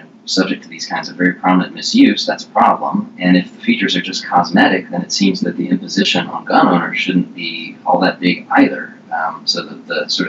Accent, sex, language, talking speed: American, male, English, 220 wpm